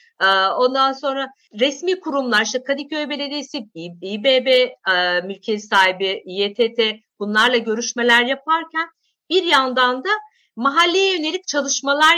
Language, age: Turkish, 50-69